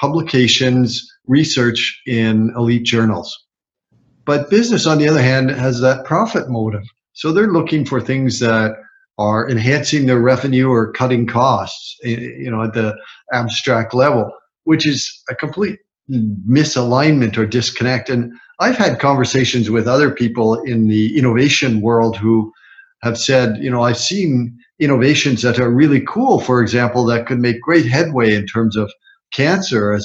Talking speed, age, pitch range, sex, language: 150 wpm, 50-69, 115-135 Hz, male, English